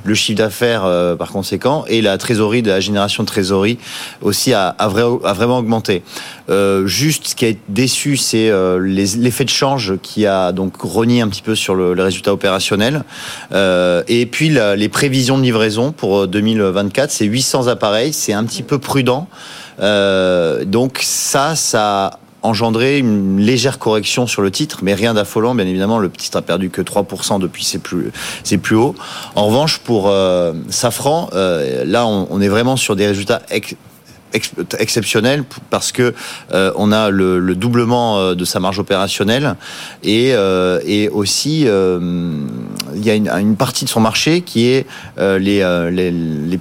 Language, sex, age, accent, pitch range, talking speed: French, male, 30-49, French, 95-120 Hz, 180 wpm